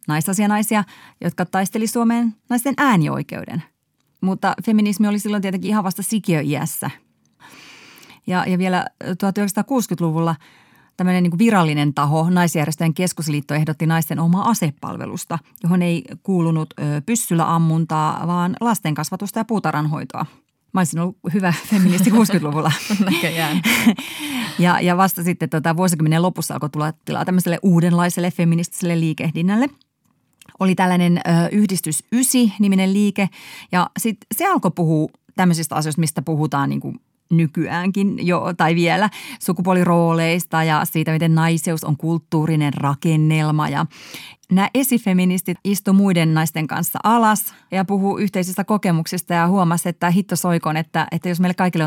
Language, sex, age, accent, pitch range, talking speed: Finnish, female, 30-49, native, 160-200 Hz, 130 wpm